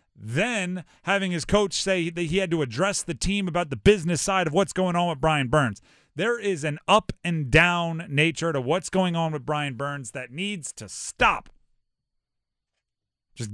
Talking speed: 185 wpm